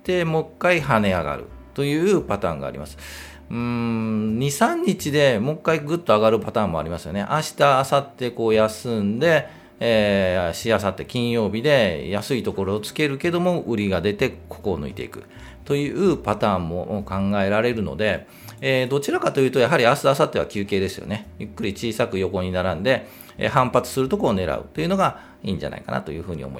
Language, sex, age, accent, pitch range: Japanese, male, 40-59, native, 90-135 Hz